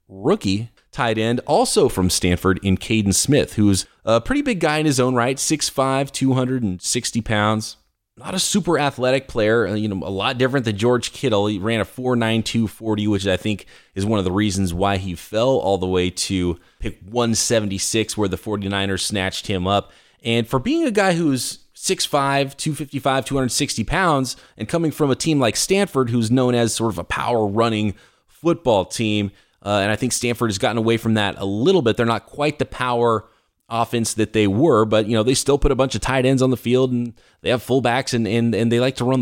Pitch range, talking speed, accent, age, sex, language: 105-130 Hz, 205 wpm, American, 20-39, male, English